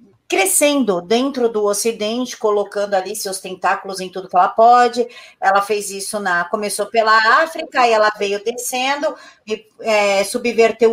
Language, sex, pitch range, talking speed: Portuguese, female, 200-235 Hz, 135 wpm